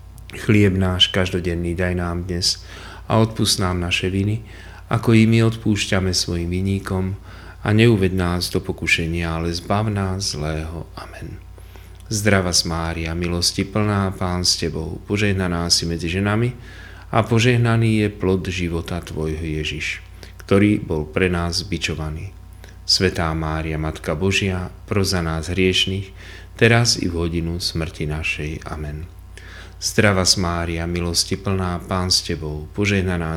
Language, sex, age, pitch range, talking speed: Slovak, male, 40-59, 85-100 Hz, 130 wpm